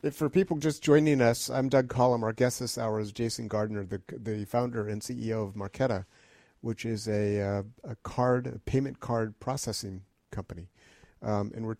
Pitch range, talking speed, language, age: 105-125 Hz, 185 wpm, English, 50-69